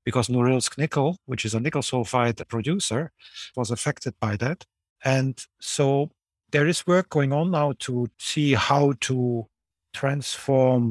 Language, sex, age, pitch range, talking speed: English, male, 50-69, 110-135 Hz, 145 wpm